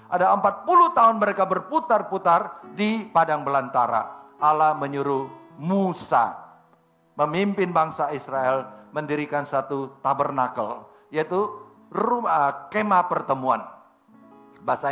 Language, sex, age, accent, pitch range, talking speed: Indonesian, male, 50-69, native, 135-195 Hz, 95 wpm